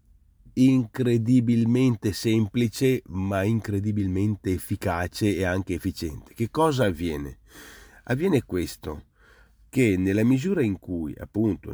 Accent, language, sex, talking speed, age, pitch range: native, Italian, male, 95 wpm, 40-59, 85-115 Hz